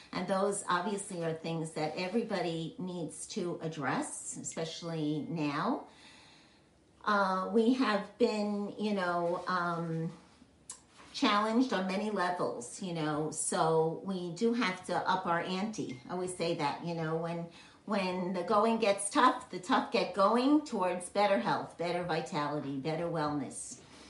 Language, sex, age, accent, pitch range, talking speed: English, female, 50-69, American, 160-220 Hz, 140 wpm